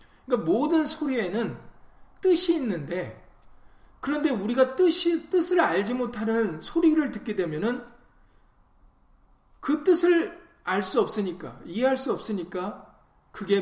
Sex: male